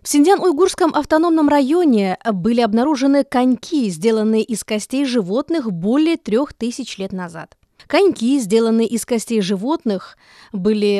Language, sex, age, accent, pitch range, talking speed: Russian, female, 20-39, native, 215-285 Hz, 120 wpm